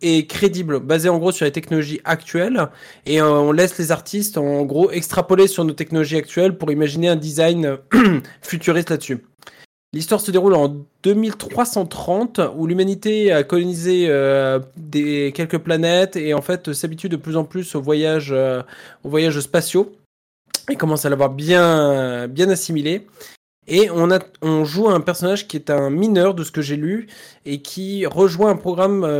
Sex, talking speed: male, 170 wpm